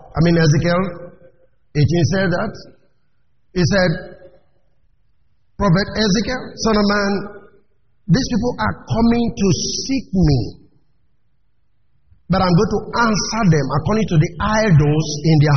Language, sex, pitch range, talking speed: English, male, 155-215 Hz, 125 wpm